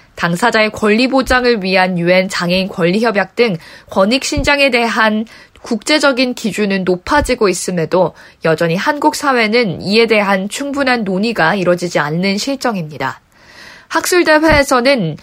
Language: Korean